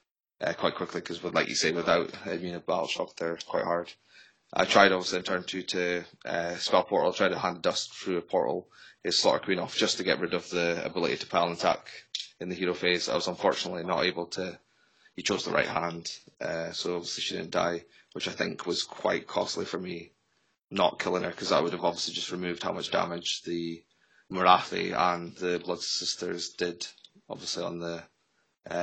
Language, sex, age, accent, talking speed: English, male, 20-39, British, 210 wpm